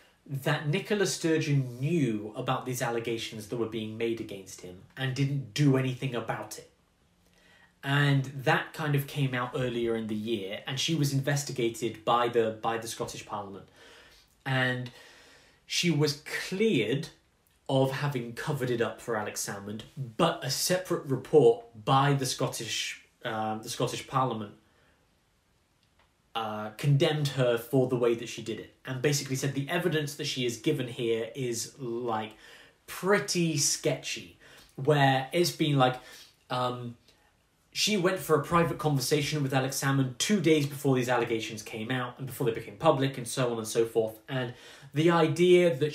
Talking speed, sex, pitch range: 160 wpm, male, 120-155 Hz